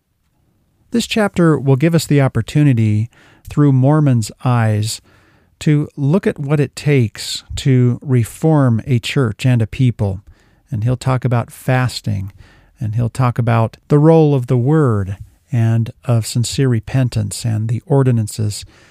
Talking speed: 140 wpm